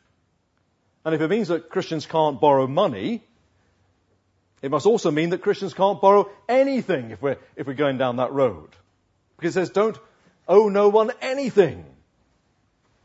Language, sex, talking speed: English, male, 155 wpm